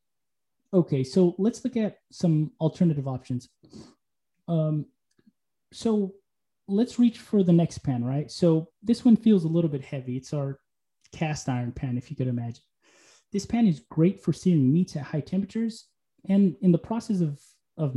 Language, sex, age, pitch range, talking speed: English, male, 20-39, 150-195 Hz, 165 wpm